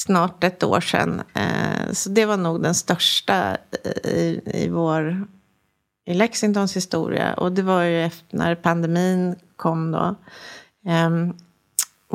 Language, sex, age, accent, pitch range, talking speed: English, female, 30-49, Swedish, 170-210 Hz, 135 wpm